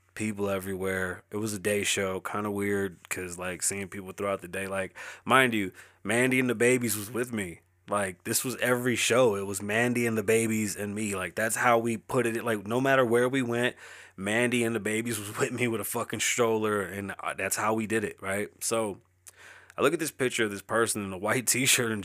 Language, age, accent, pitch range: English, 20-39, American, 100-125 Hz